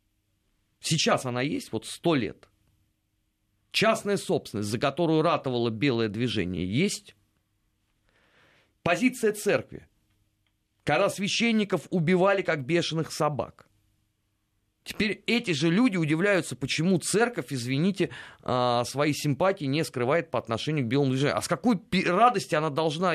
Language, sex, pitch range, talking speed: Russian, male, 110-180 Hz, 115 wpm